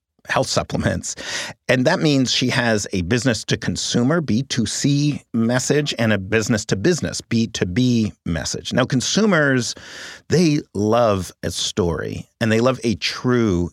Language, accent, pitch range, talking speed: English, American, 90-125 Hz, 120 wpm